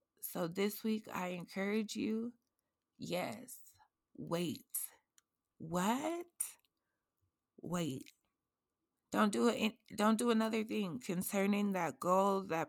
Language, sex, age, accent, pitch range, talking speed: English, female, 20-39, American, 175-210 Hz, 105 wpm